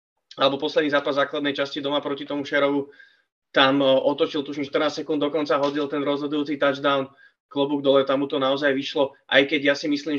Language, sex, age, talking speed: Czech, male, 20-39, 190 wpm